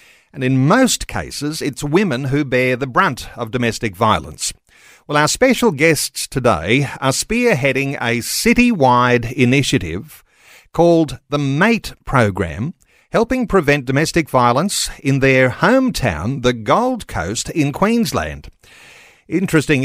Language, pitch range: English, 125-180 Hz